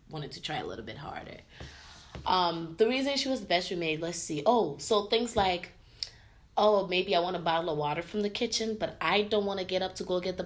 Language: English